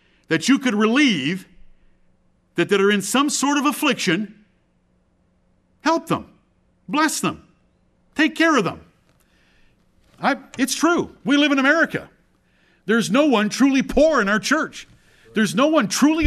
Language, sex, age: English, male, 50-69